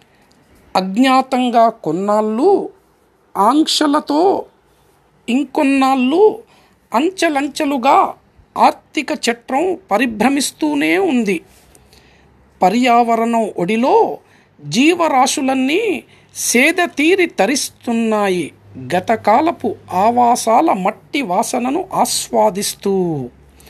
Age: 50-69